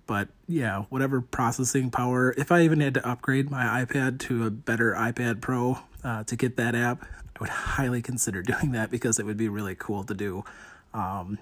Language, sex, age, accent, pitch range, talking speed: English, male, 30-49, American, 110-135 Hz, 200 wpm